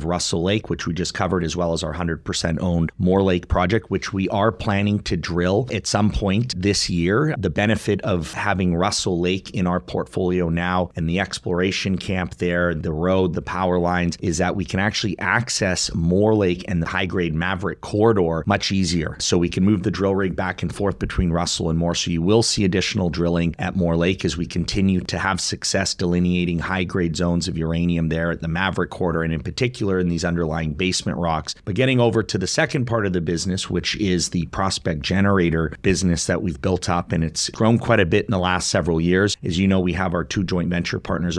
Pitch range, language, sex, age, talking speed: 85-95 Hz, English, male, 30-49, 215 wpm